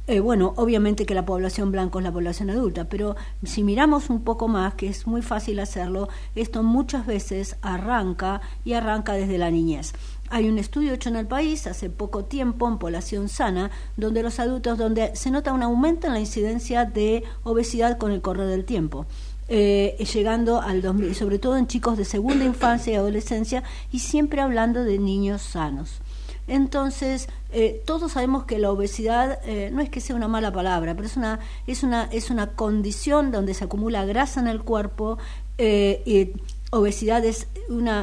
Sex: female